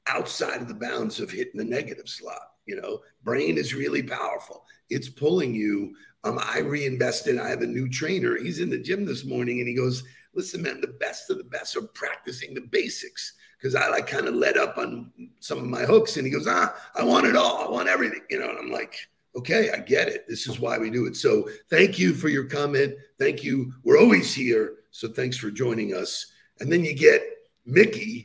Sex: male